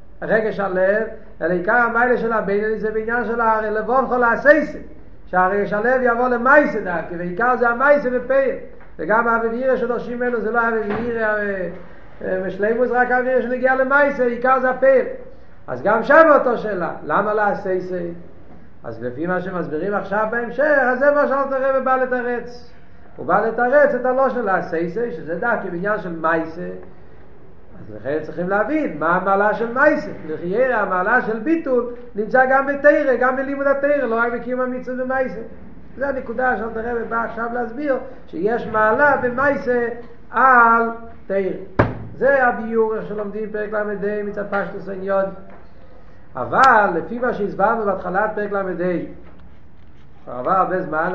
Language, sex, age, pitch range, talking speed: Hebrew, male, 50-69, 190-250 Hz, 135 wpm